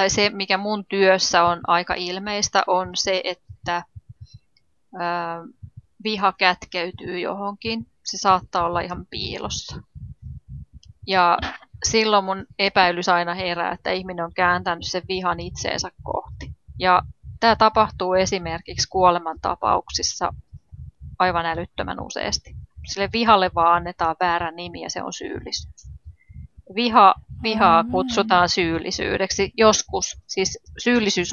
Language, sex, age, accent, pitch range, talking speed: Finnish, female, 30-49, native, 170-195 Hz, 115 wpm